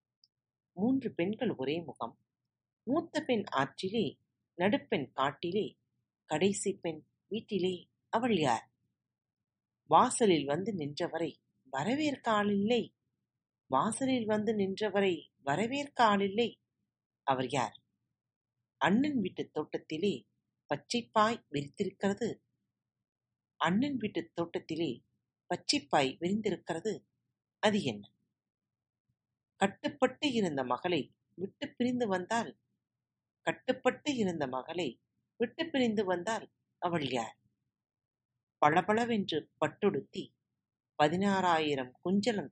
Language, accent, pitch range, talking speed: Tamil, native, 135-225 Hz, 80 wpm